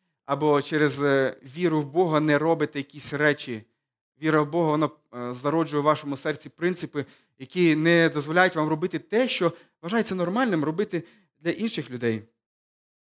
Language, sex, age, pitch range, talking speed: Ukrainian, male, 20-39, 145-175 Hz, 140 wpm